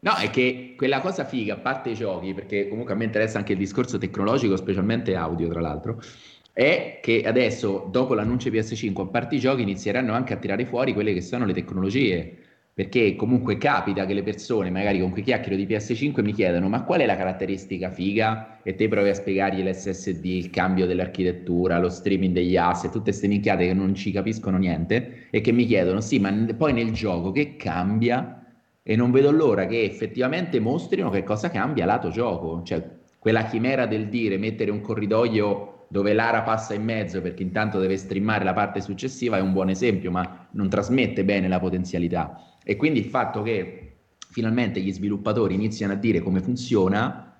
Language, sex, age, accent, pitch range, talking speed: Italian, male, 30-49, native, 95-115 Hz, 190 wpm